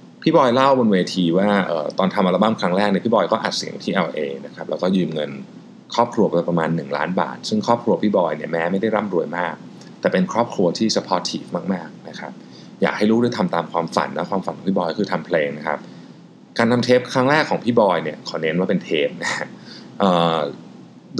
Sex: male